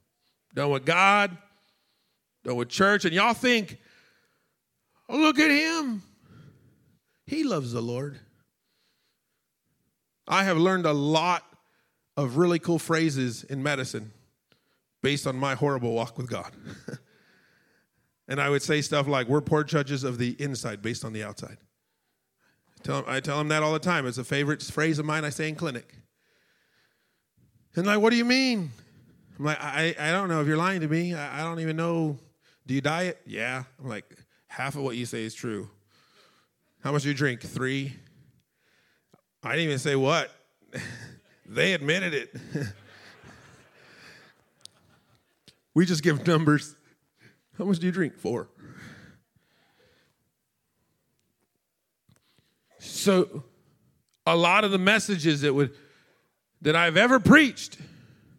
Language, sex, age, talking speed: English, male, 40-59, 140 wpm